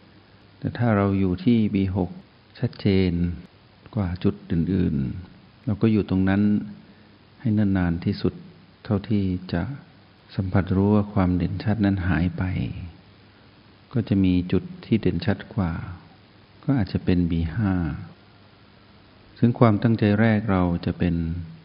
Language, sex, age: Thai, male, 60-79